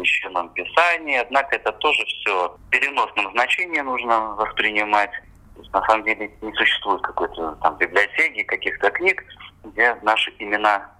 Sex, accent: male, native